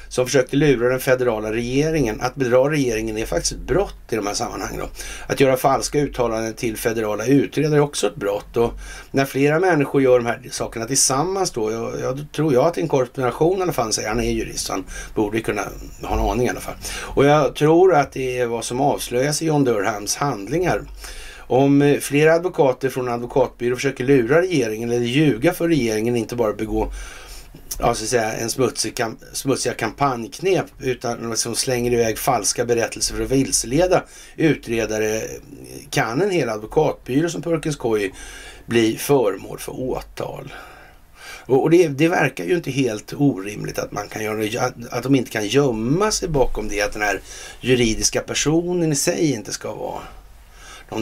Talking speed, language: 170 wpm, Swedish